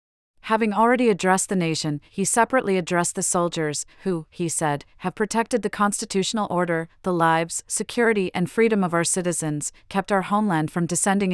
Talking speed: 165 wpm